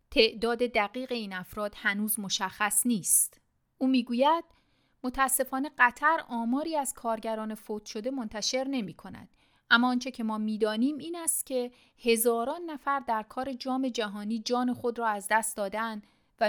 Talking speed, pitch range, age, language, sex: 140 wpm, 215-260 Hz, 40-59, Persian, female